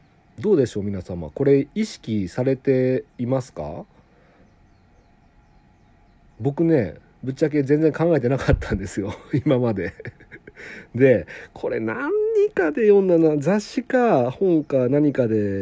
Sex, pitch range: male, 105-150 Hz